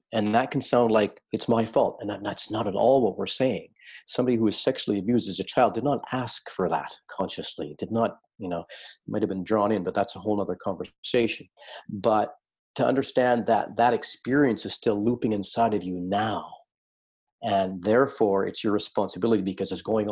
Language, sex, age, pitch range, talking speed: English, male, 40-59, 90-110 Hz, 195 wpm